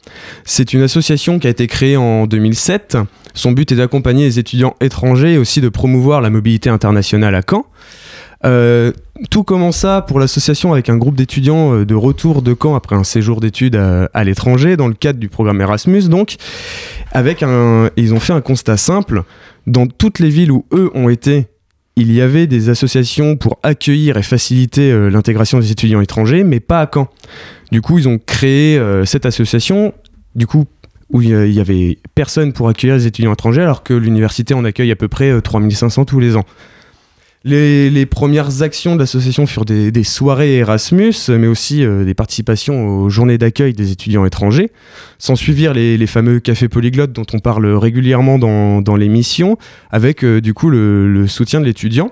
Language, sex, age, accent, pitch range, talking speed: French, male, 20-39, French, 110-140 Hz, 185 wpm